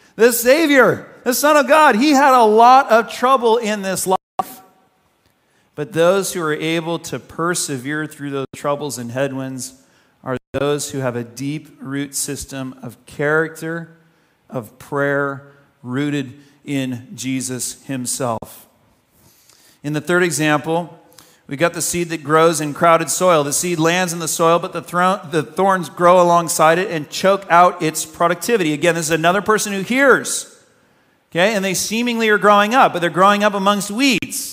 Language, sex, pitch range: English, male, 145-215 Hz